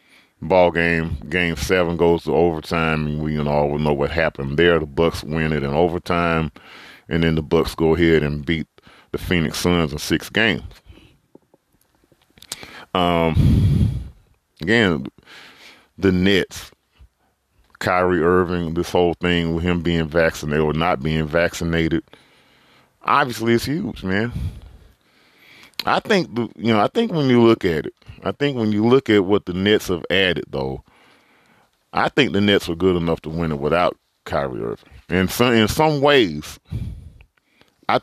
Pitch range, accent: 80-100 Hz, American